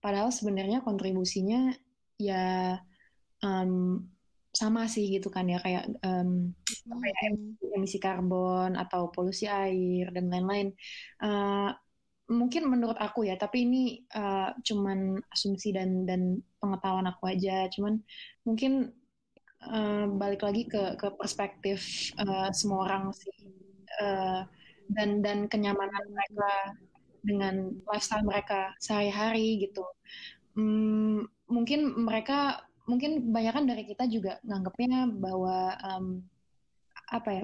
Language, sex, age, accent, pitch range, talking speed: Indonesian, female, 20-39, native, 190-215 Hz, 110 wpm